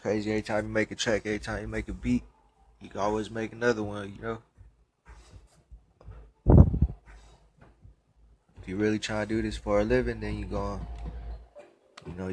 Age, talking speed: 20-39, 165 wpm